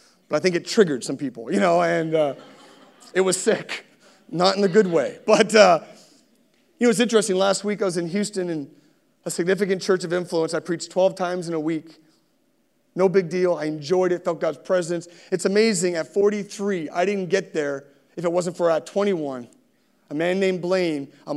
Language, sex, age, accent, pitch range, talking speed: English, male, 40-59, American, 155-200 Hz, 200 wpm